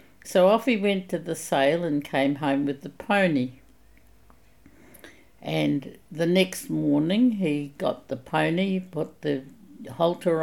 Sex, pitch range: female, 155-190 Hz